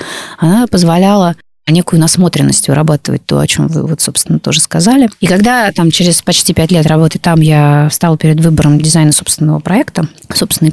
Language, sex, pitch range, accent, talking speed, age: Russian, female, 160-195 Hz, native, 170 wpm, 30-49